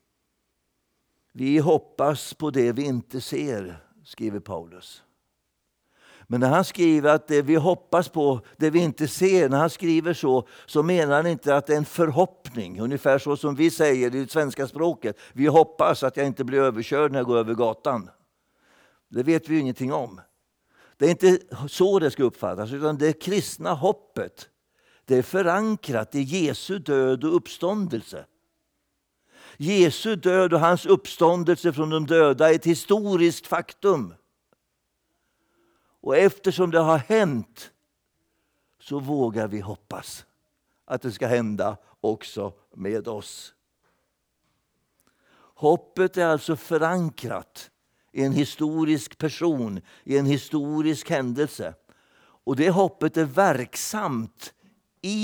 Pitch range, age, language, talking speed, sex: 135-170 Hz, 60-79, Swedish, 135 wpm, male